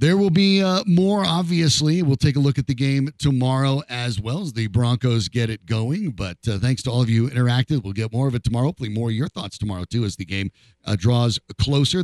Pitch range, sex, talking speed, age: 105-155 Hz, male, 245 wpm, 50-69